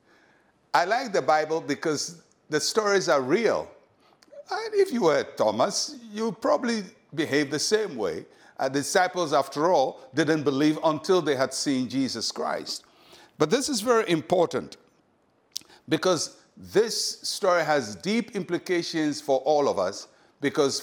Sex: male